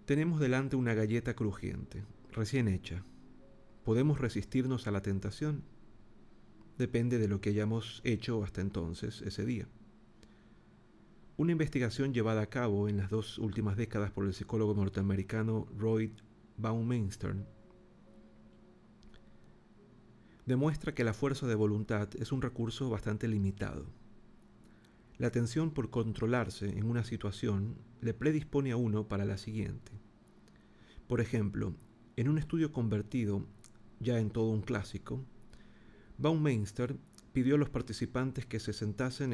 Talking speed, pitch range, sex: 125 wpm, 105-125 Hz, male